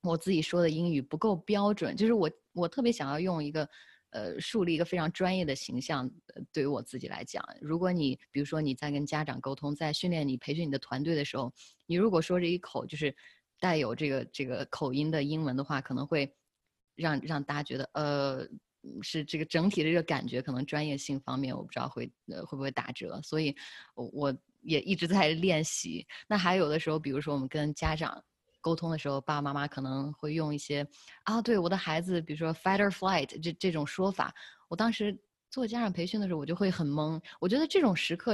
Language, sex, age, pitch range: Chinese, female, 20-39, 145-185 Hz